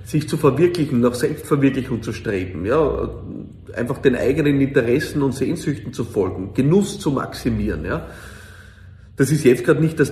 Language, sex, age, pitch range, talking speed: German, male, 40-59, 110-150 Hz, 155 wpm